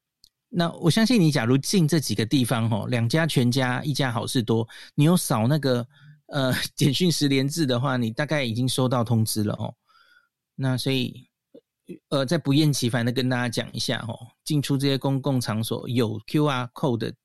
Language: Chinese